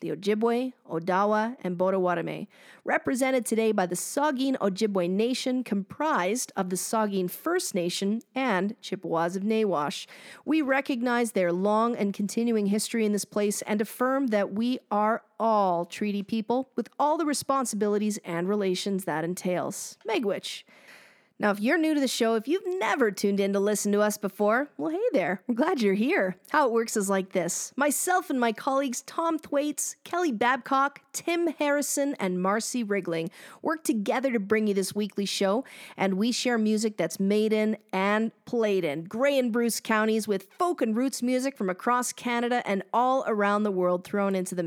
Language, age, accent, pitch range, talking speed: English, 40-59, American, 190-255 Hz, 175 wpm